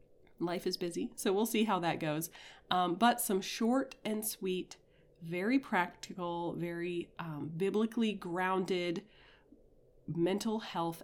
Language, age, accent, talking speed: English, 30-49, American, 125 wpm